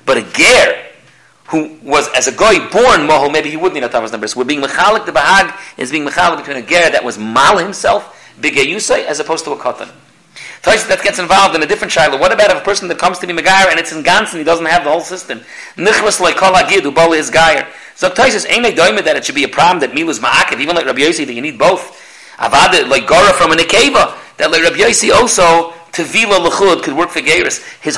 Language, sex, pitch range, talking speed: English, male, 145-185 Hz, 240 wpm